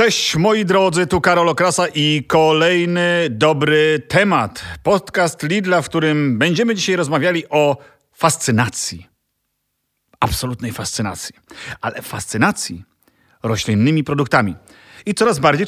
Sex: male